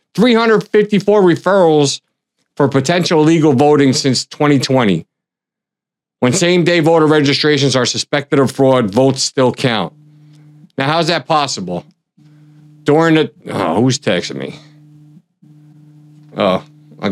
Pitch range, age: 135-160 Hz, 50-69